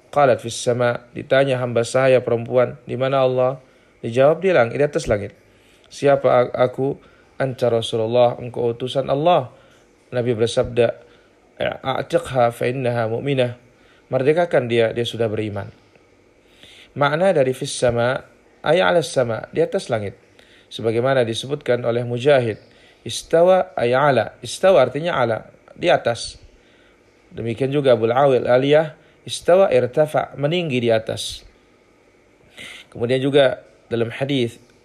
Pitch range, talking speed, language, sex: 120-135 Hz, 105 wpm, Indonesian, male